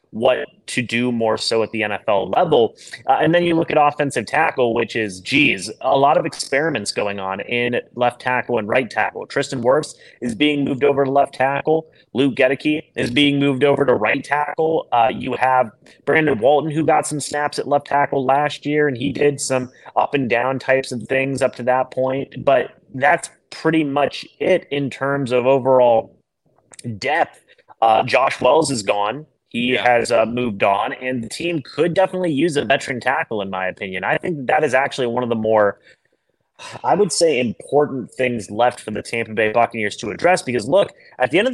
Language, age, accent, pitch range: English, 30-49, American, 120-145 Hz